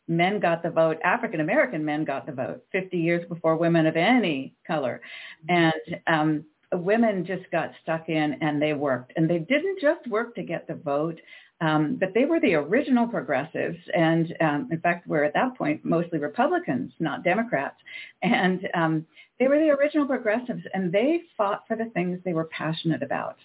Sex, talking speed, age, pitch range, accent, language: female, 180 wpm, 50-69, 165-230 Hz, American, English